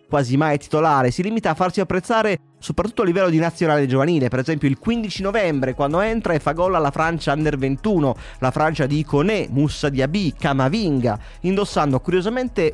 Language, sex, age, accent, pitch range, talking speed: Italian, male, 30-49, native, 125-175 Hz, 180 wpm